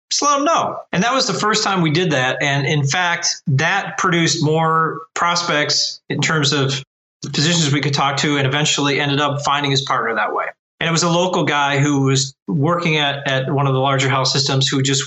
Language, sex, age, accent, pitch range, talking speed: English, male, 40-59, American, 135-170 Hz, 225 wpm